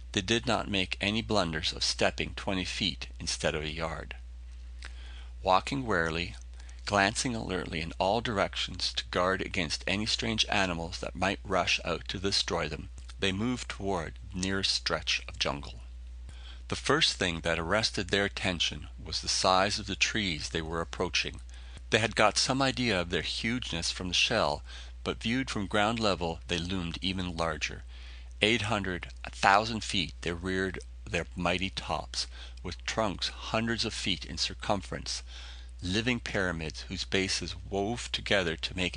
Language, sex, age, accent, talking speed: English, male, 40-59, American, 160 wpm